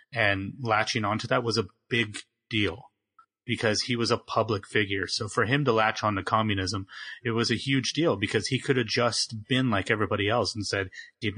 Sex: male